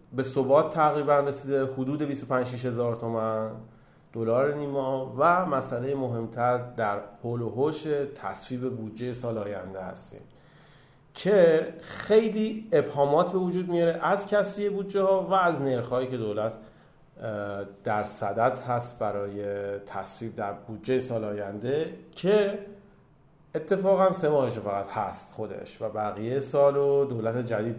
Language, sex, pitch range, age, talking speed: Persian, male, 115-155 Hz, 40-59, 120 wpm